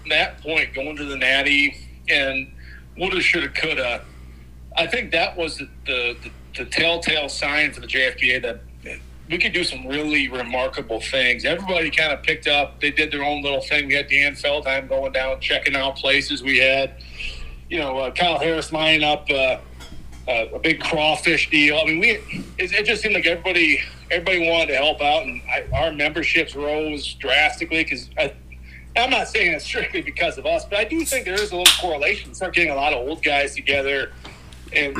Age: 40-59